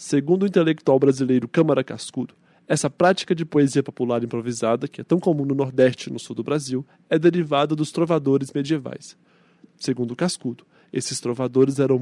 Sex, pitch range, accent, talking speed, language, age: male, 135-165 Hz, Brazilian, 165 wpm, Portuguese, 20-39